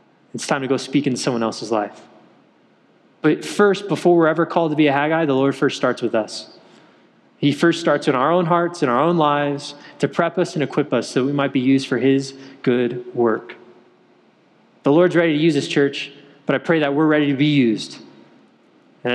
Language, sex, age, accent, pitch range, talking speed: English, male, 20-39, American, 135-175 Hz, 215 wpm